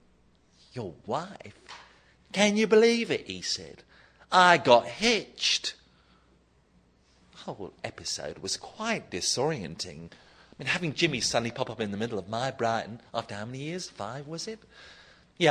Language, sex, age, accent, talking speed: English, male, 40-59, British, 145 wpm